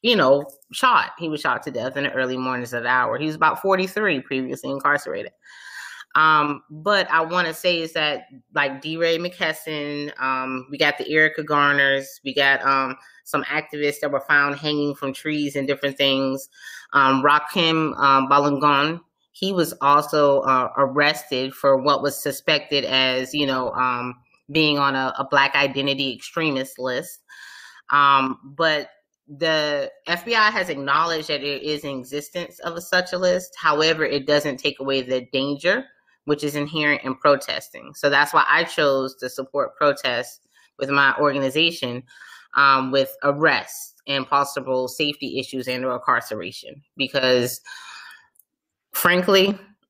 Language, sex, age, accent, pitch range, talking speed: English, female, 20-39, American, 135-155 Hz, 155 wpm